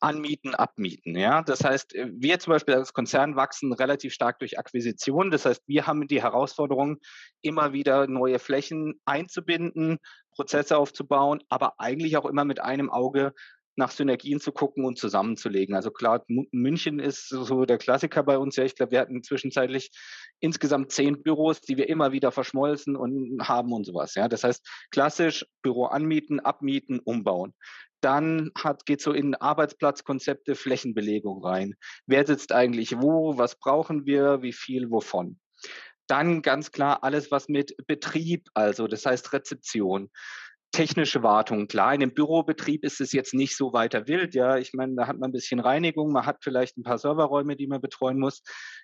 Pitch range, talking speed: 125-150 Hz, 165 wpm